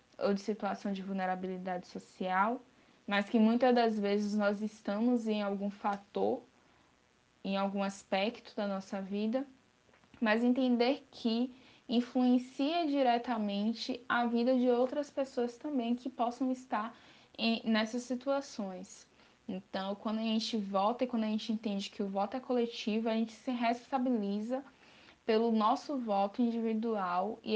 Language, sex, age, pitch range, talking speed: Portuguese, female, 10-29, 195-235 Hz, 135 wpm